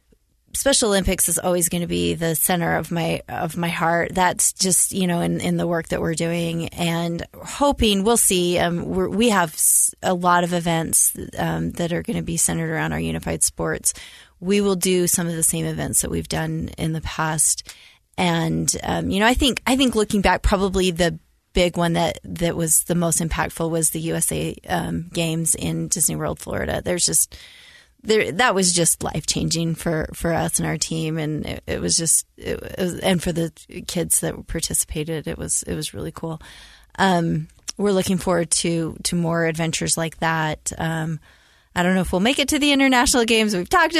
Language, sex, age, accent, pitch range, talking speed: English, female, 30-49, American, 160-185 Hz, 200 wpm